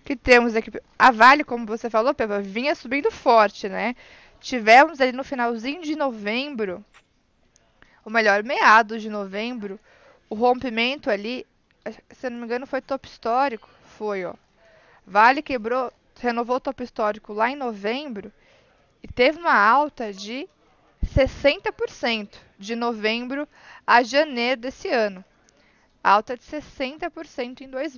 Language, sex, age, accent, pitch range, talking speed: Portuguese, female, 20-39, Brazilian, 220-270 Hz, 135 wpm